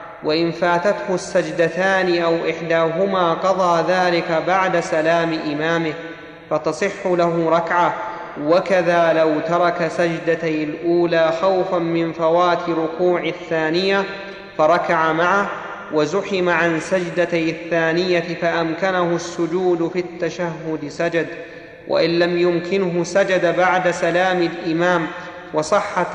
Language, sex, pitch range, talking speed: Arabic, male, 165-185 Hz, 95 wpm